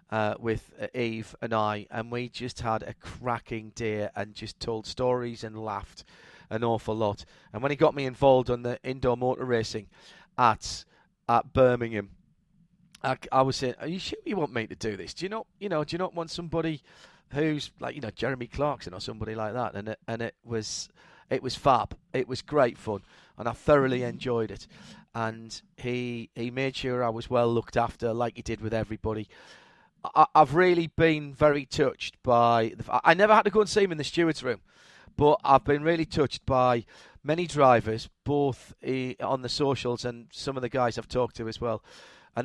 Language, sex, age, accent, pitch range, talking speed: English, male, 40-59, British, 115-145 Hz, 200 wpm